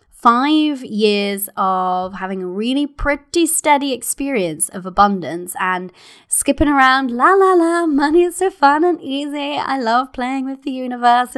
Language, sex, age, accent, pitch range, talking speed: English, female, 20-39, British, 195-285 Hz, 155 wpm